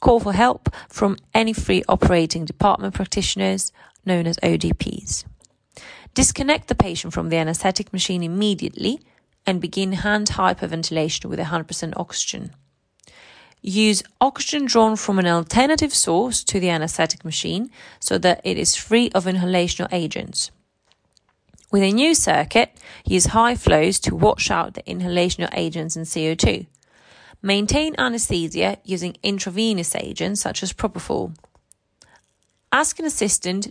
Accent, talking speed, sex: British, 130 wpm, female